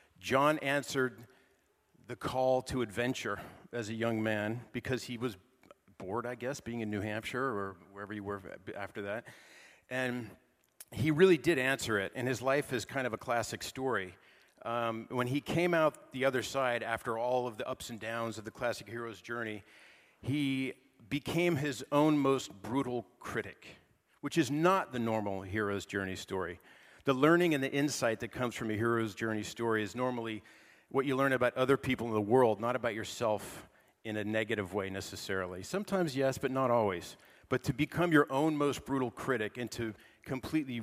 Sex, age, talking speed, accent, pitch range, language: male, 40-59, 180 wpm, American, 110-135 Hz, English